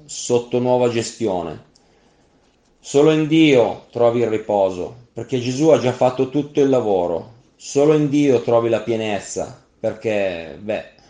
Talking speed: 135 wpm